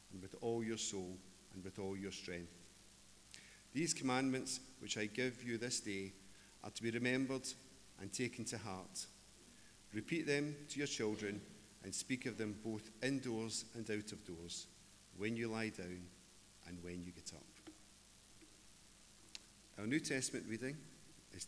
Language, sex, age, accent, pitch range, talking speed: English, male, 40-59, British, 100-125 Hz, 155 wpm